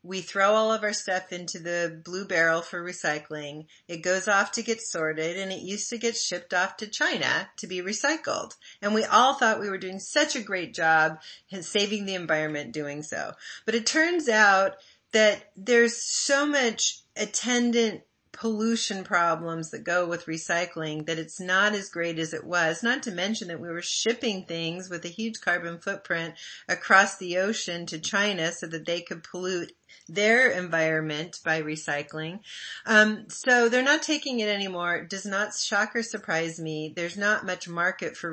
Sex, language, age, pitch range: female, English, 40-59, 170-225 Hz